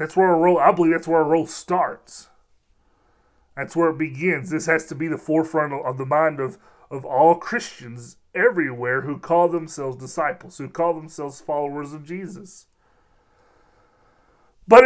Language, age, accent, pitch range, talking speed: English, 30-49, American, 135-170 Hz, 160 wpm